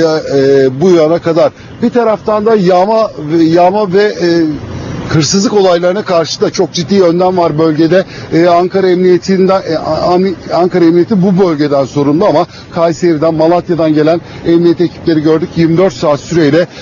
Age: 60-79